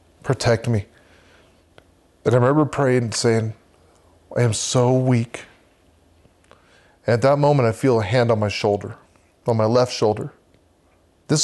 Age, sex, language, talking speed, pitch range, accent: 30-49, male, English, 145 wpm, 90-125 Hz, American